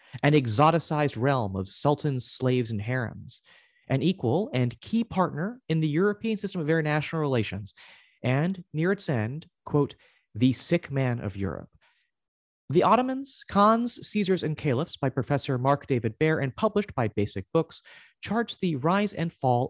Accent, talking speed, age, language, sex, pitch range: American, 155 wpm, 30-49, English, male, 120-170 Hz